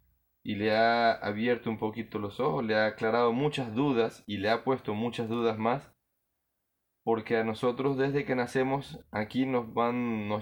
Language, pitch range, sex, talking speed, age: Spanish, 105-120 Hz, male, 175 wpm, 20-39